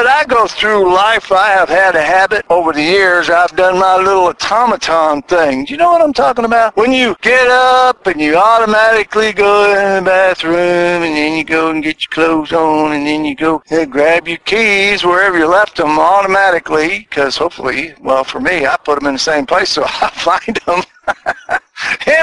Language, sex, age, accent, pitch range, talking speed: English, male, 60-79, American, 175-255 Hz, 205 wpm